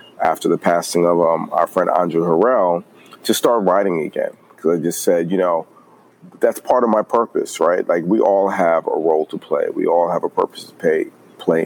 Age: 40-59